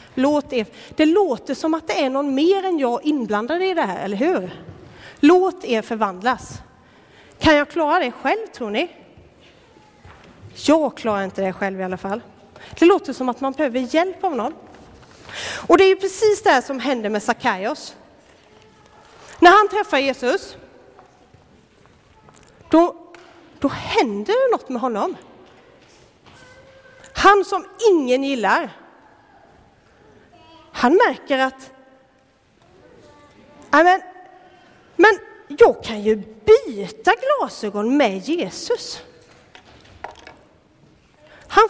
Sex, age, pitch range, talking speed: female, 30-49, 260-370 Hz, 120 wpm